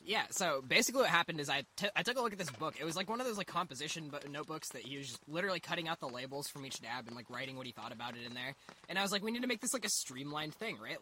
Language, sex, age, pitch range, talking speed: English, male, 20-39, 135-175 Hz, 330 wpm